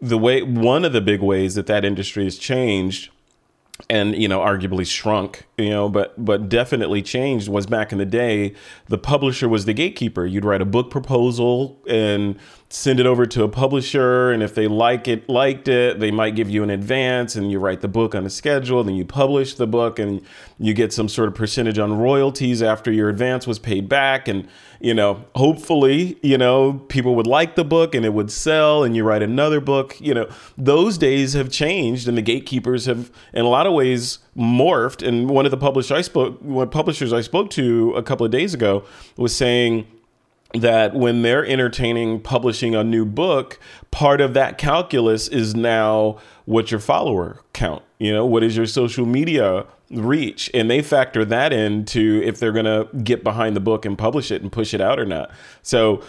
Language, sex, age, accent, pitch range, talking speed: English, male, 30-49, American, 110-135 Hz, 205 wpm